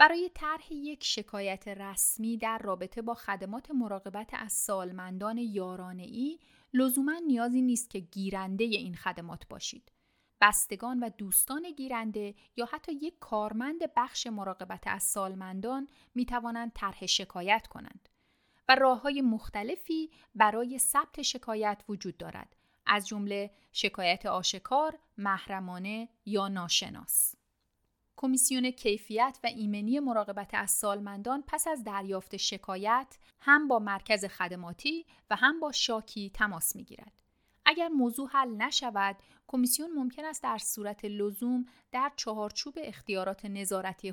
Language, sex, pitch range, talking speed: Persian, female, 200-260 Hz, 120 wpm